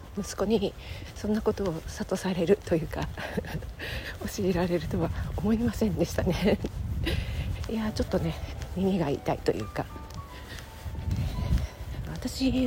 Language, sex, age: Japanese, female, 40-59